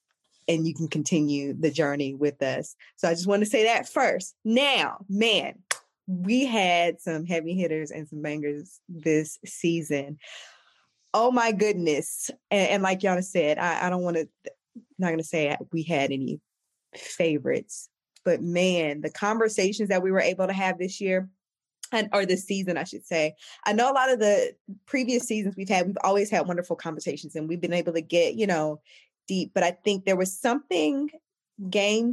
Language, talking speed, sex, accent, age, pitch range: English, 185 wpm, female, American, 20-39, 160-210 Hz